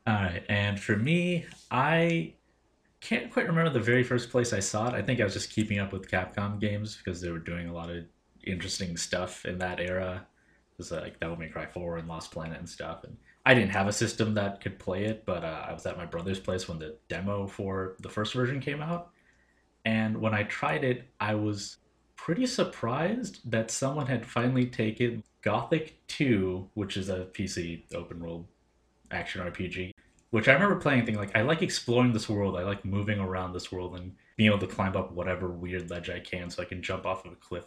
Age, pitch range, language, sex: 30-49, 90-120 Hz, English, male